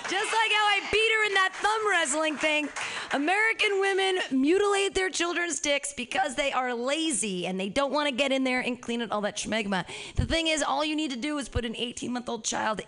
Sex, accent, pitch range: female, American, 205-275 Hz